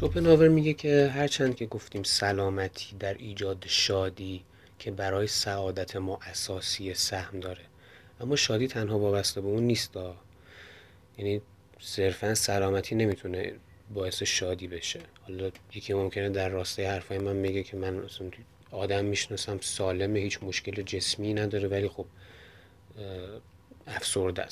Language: Persian